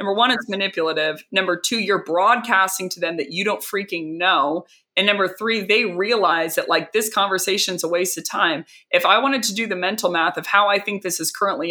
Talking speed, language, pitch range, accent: 225 wpm, English, 170-210 Hz, American